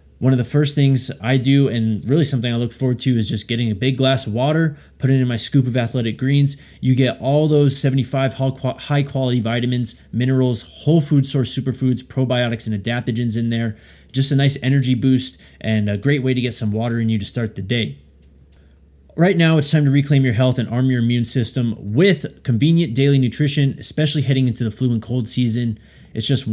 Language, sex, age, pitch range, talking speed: English, male, 20-39, 110-135 Hz, 210 wpm